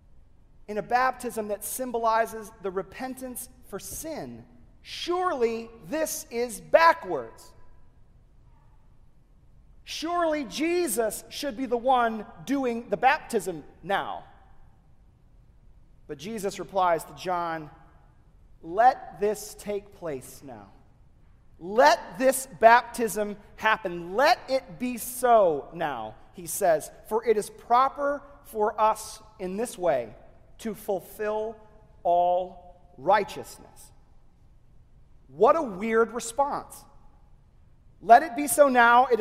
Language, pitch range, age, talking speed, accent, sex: English, 200-265 Hz, 40-59, 105 wpm, American, male